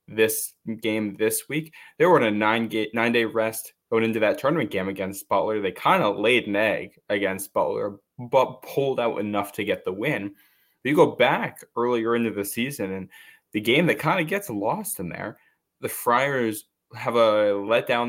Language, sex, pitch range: English, male, 105-125 Hz